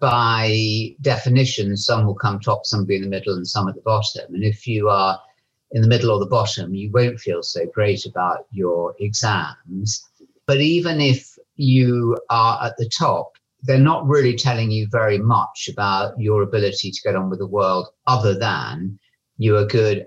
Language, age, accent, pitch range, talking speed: English, 50-69, British, 95-125 Hz, 190 wpm